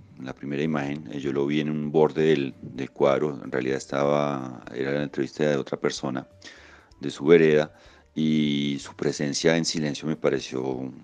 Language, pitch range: Spanish, 70-75 Hz